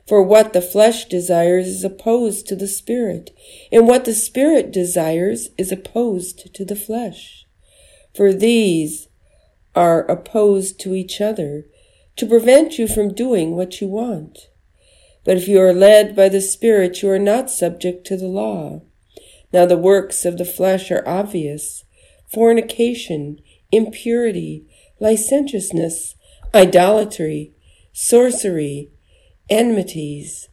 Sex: female